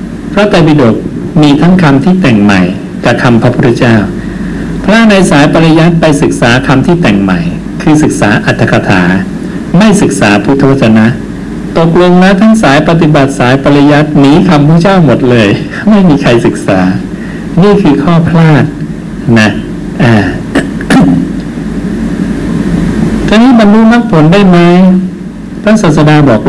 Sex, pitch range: male, 115-170 Hz